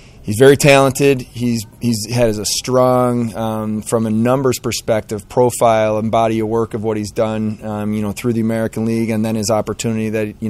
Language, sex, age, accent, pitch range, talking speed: English, male, 30-49, American, 110-125 Hz, 200 wpm